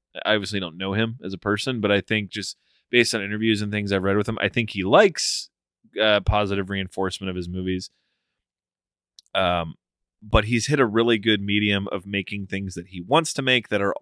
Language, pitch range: English, 95-115 Hz